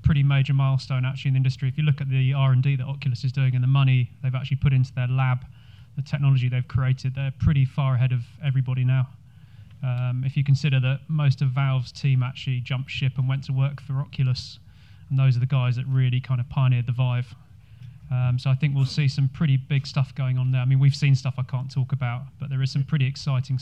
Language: English